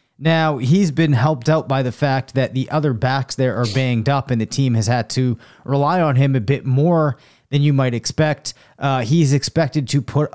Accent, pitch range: American, 125-150 Hz